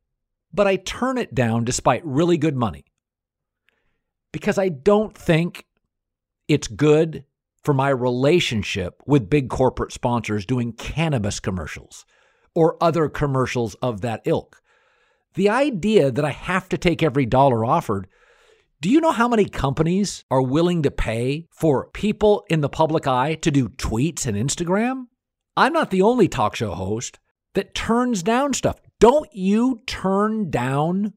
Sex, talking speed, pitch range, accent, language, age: male, 150 wpm, 135-195 Hz, American, English, 50-69